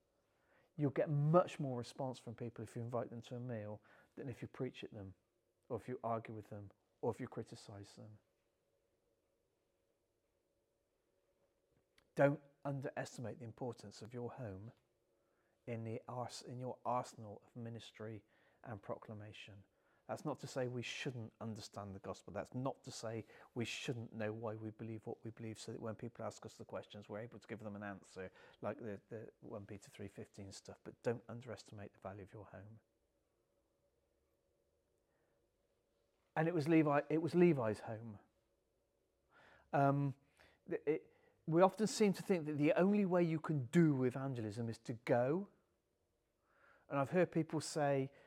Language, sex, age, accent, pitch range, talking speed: English, male, 40-59, British, 110-140 Hz, 160 wpm